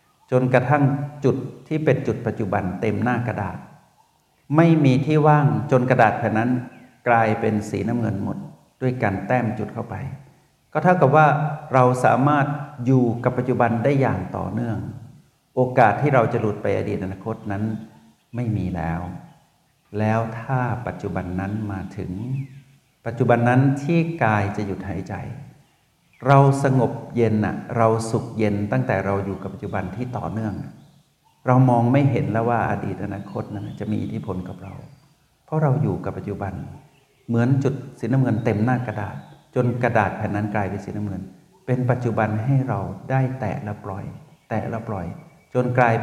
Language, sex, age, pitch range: Thai, male, 60-79, 105-135 Hz